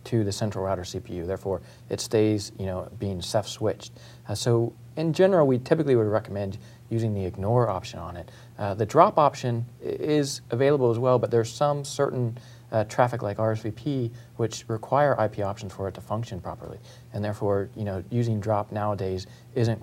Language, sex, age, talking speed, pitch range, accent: English, male, 40-59, 185 wpm, 100-120 Hz, American